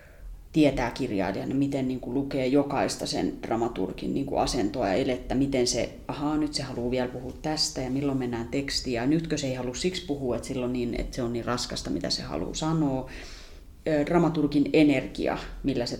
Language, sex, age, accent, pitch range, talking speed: Finnish, female, 30-49, native, 125-150 Hz, 190 wpm